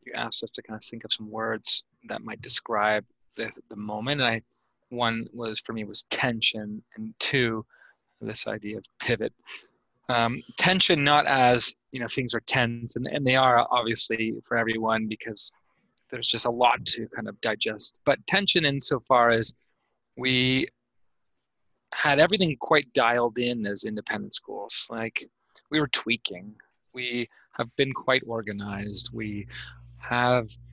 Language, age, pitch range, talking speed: English, 20-39, 110-130 Hz, 150 wpm